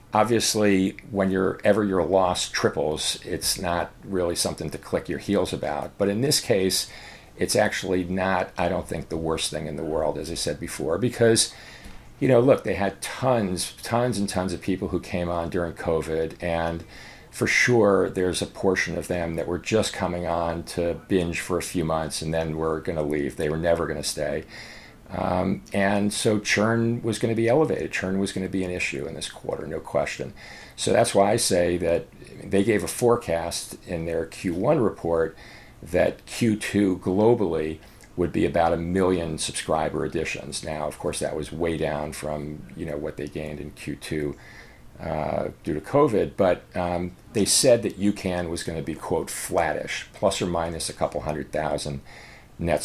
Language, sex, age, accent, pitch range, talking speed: English, male, 50-69, American, 80-100 Hz, 190 wpm